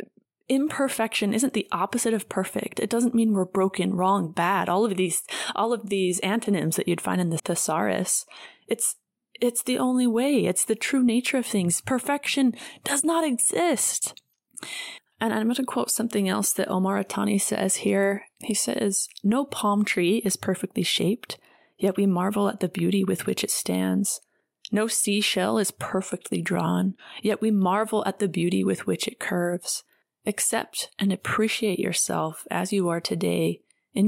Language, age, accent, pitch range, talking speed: English, 20-39, American, 185-225 Hz, 165 wpm